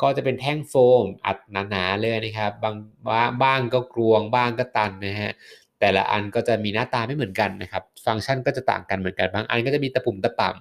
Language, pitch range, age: Thai, 95-120 Hz, 20-39